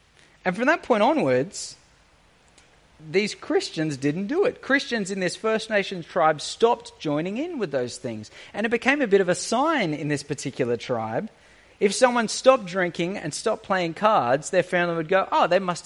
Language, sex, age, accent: English, male, 30-49, Australian